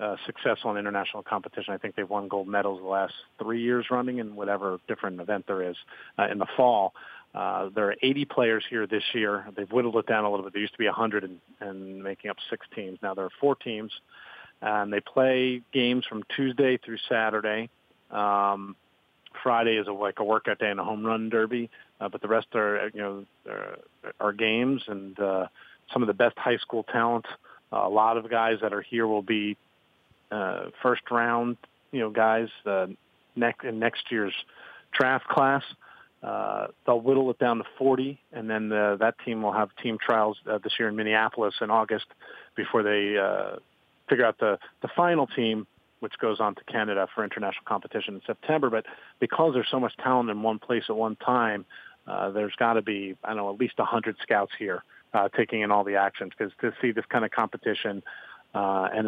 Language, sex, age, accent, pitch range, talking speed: English, male, 40-59, American, 100-120 Hz, 200 wpm